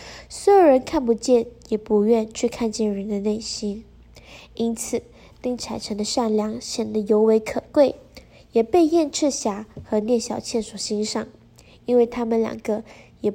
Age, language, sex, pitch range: 10-29, Chinese, female, 220-260 Hz